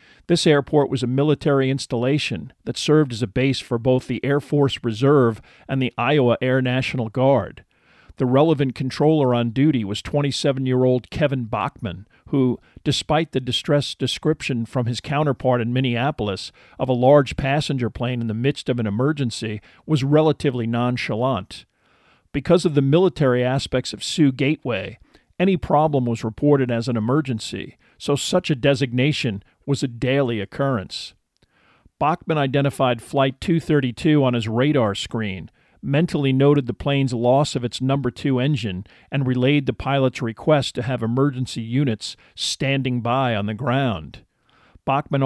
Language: English